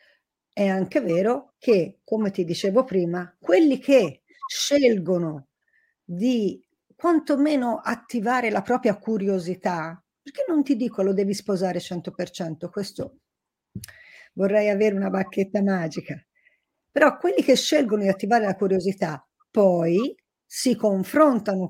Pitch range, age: 190-275 Hz, 50-69